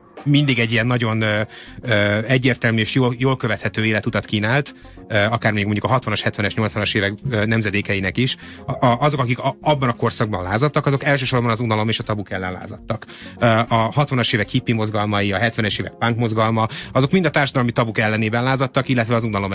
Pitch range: 105-125 Hz